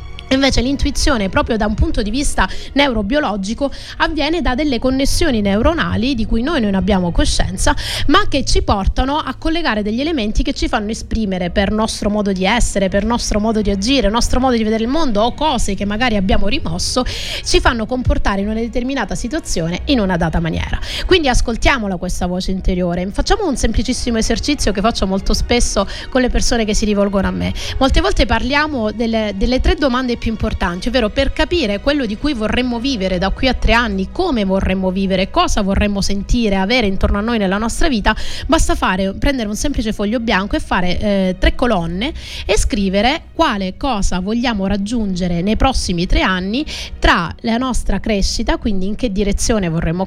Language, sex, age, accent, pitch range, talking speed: Italian, female, 30-49, native, 200-265 Hz, 180 wpm